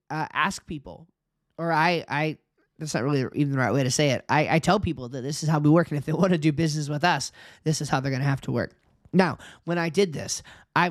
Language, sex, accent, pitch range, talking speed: English, male, American, 145-175 Hz, 275 wpm